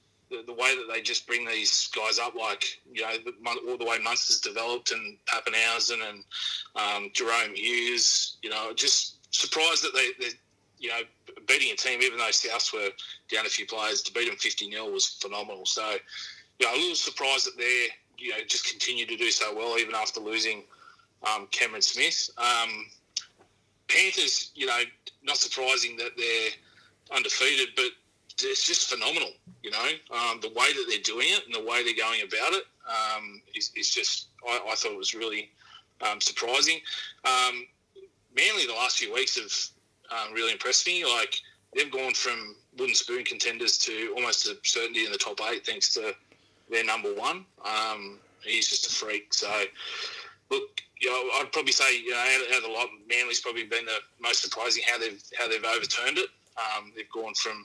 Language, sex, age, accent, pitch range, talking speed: English, male, 30-49, Australian, 330-440 Hz, 175 wpm